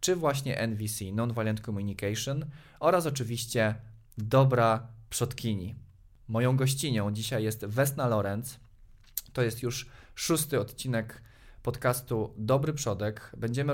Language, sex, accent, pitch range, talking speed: Polish, male, native, 110-130 Hz, 105 wpm